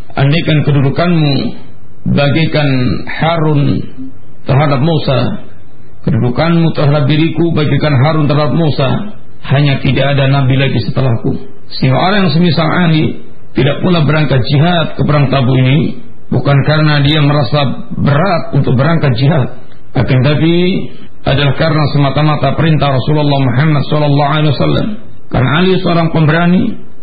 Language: Malay